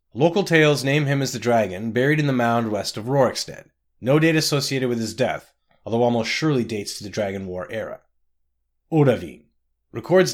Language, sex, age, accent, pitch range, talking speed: English, male, 30-49, American, 100-135 Hz, 180 wpm